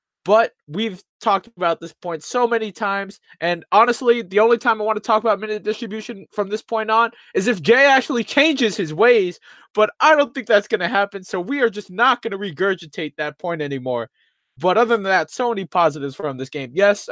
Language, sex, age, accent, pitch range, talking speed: English, male, 20-39, American, 165-220 Hz, 215 wpm